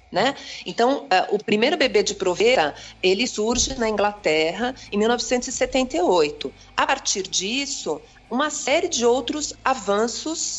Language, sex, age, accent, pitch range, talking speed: Portuguese, female, 50-69, Brazilian, 180-255 Hz, 115 wpm